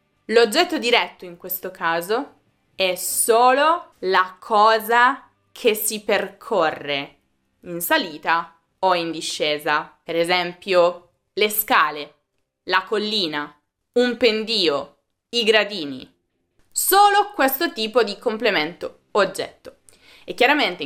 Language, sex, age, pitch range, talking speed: Italian, female, 20-39, 180-265 Hz, 100 wpm